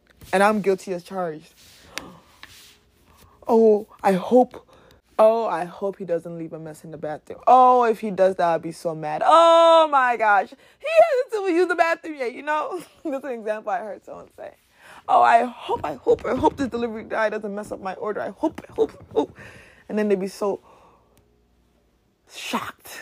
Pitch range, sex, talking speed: 195-315 Hz, female, 200 wpm